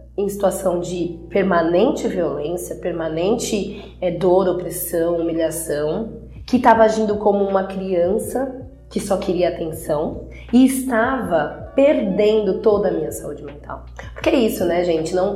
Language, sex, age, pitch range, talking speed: Portuguese, female, 20-39, 170-200 Hz, 130 wpm